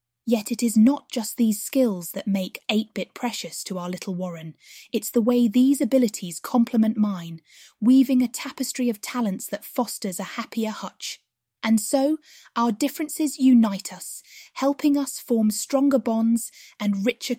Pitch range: 200-250 Hz